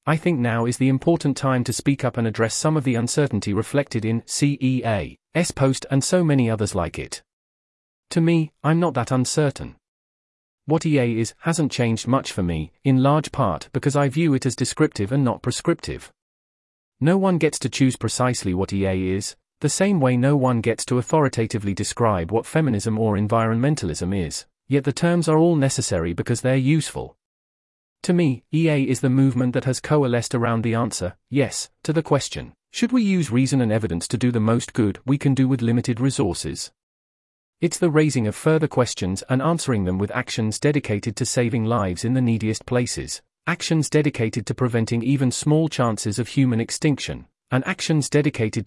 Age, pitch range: 30-49, 115-145 Hz